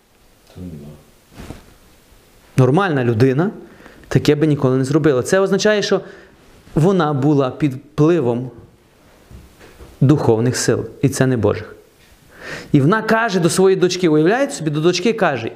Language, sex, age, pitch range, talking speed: Ukrainian, male, 30-49, 120-185 Hz, 120 wpm